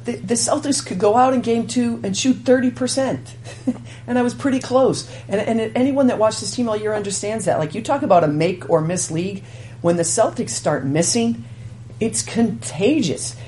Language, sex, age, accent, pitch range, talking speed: English, female, 50-69, American, 135-200 Hz, 185 wpm